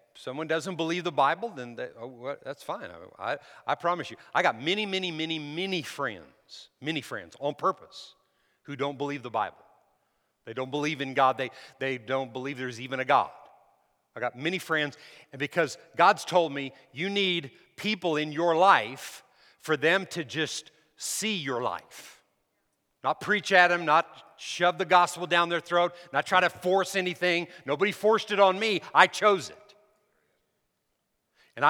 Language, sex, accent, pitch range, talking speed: English, male, American, 145-190 Hz, 175 wpm